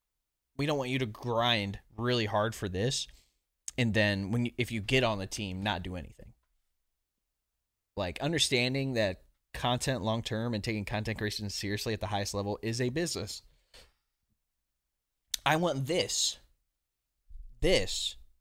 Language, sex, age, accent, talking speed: English, male, 20-39, American, 145 wpm